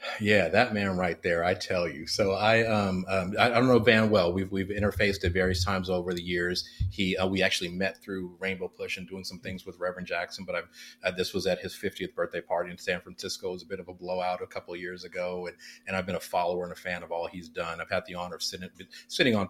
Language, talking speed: English, 270 wpm